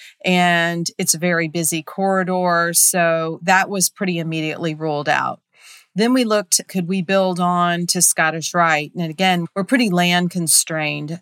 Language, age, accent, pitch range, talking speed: English, 40-59, American, 160-185 Hz, 155 wpm